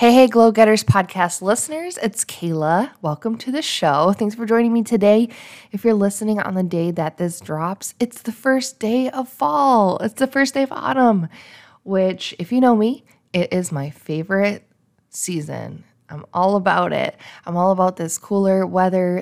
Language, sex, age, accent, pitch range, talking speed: English, female, 20-39, American, 165-210 Hz, 180 wpm